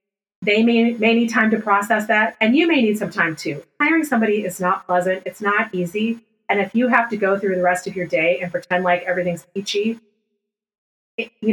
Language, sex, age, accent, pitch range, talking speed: English, female, 30-49, American, 180-225 Hz, 220 wpm